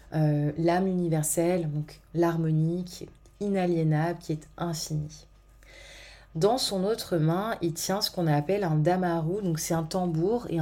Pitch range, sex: 160-185 Hz, female